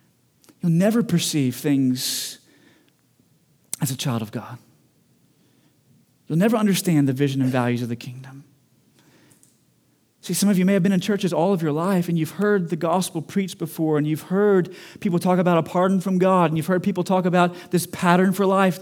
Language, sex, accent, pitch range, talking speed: English, male, American, 130-170 Hz, 190 wpm